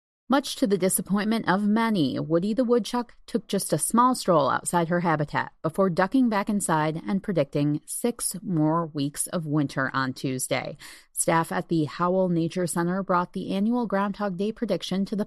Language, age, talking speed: English, 30-49, 175 wpm